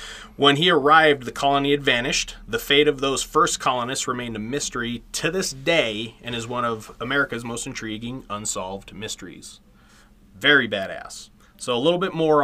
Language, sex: English, male